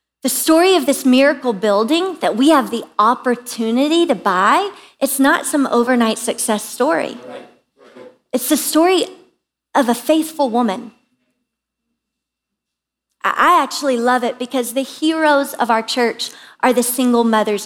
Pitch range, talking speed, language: 240-305 Hz, 135 wpm, English